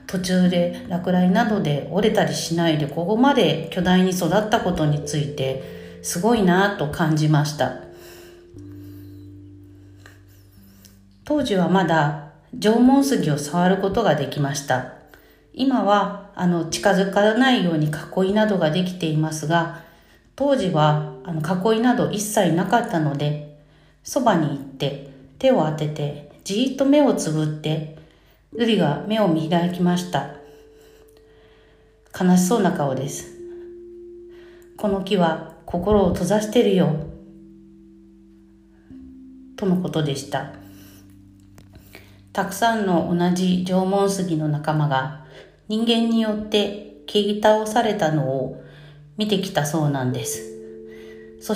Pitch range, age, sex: 140-205 Hz, 40-59, female